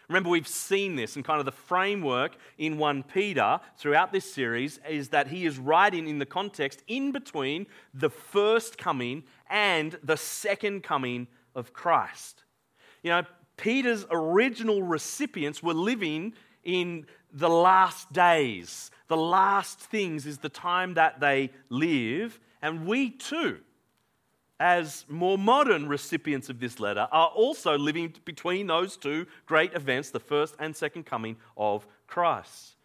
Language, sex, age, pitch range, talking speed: English, male, 40-59, 155-215 Hz, 145 wpm